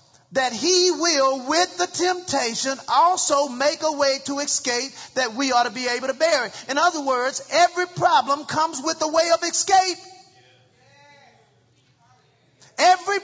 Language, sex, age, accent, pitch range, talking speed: English, male, 40-59, American, 275-360 Hz, 145 wpm